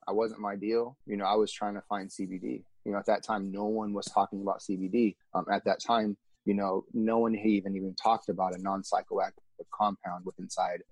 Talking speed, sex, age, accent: 220 wpm, male, 30-49, American